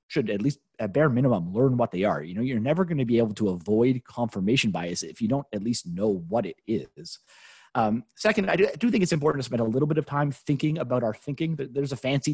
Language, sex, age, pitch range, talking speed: English, male, 30-49, 110-150 Hz, 265 wpm